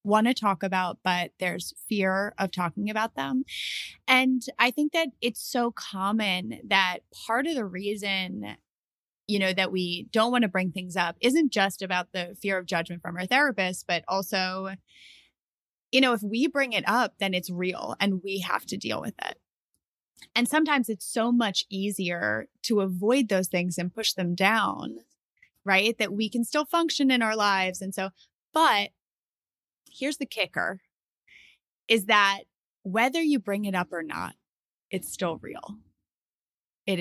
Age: 20-39